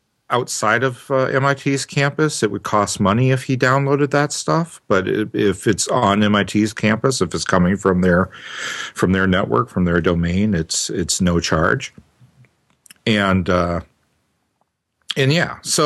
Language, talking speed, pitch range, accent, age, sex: English, 150 wpm, 100-145 Hz, American, 50-69, male